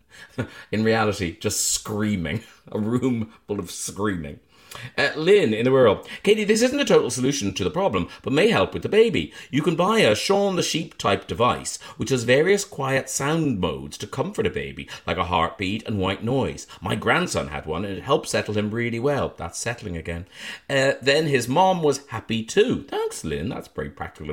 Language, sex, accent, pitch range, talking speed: English, male, British, 95-145 Hz, 195 wpm